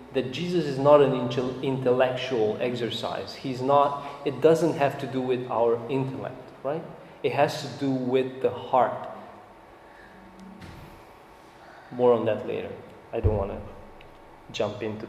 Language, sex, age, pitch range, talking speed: English, male, 30-49, 125-145 Hz, 140 wpm